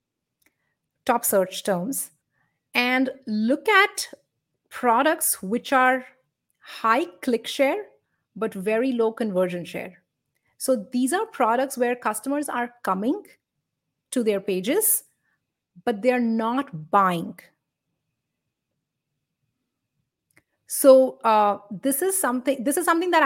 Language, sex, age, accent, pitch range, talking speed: English, female, 30-49, Indian, 205-265 Hz, 110 wpm